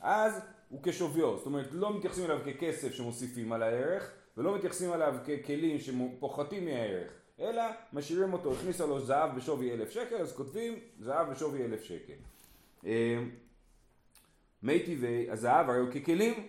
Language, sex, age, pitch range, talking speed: Hebrew, male, 30-49, 125-180 Hz, 120 wpm